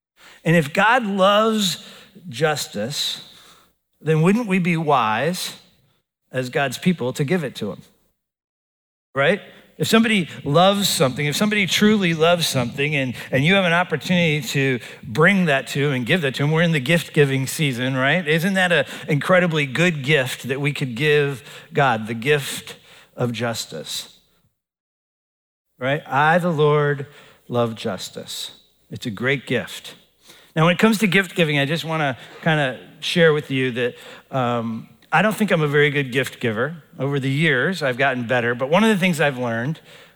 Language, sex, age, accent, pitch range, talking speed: English, male, 50-69, American, 130-170 Hz, 175 wpm